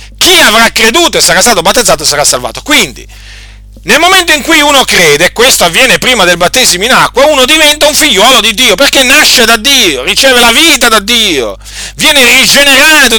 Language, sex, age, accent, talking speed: Italian, male, 40-59, native, 185 wpm